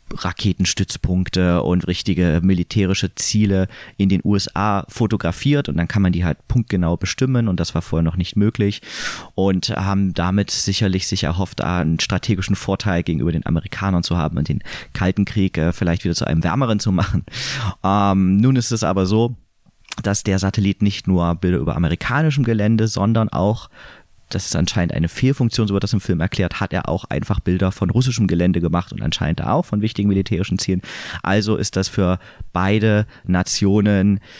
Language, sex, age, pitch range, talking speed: German, male, 30-49, 90-110 Hz, 175 wpm